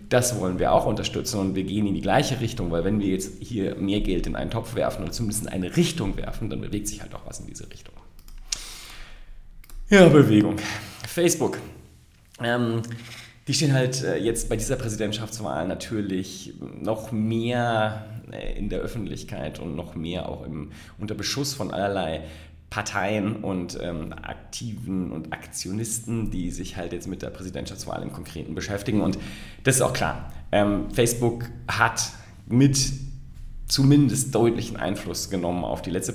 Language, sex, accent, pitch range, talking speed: German, male, German, 90-115 Hz, 160 wpm